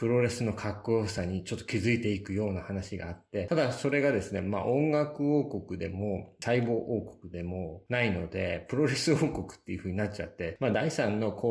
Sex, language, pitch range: male, Japanese, 95-115 Hz